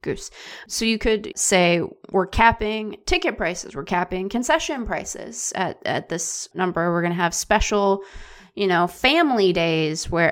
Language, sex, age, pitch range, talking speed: English, female, 20-39, 175-225 Hz, 155 wpm